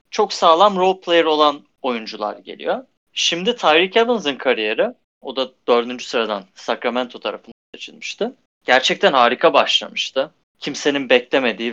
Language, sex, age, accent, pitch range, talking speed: Turkish, male, 30-49, native, 125-185 Hz, 120 wpm